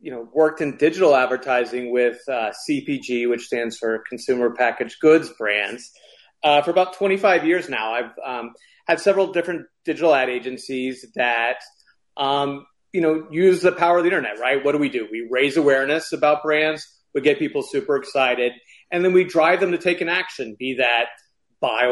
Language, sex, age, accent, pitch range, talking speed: English, male, 30-49, American, 135-225 Hz, 185 wpm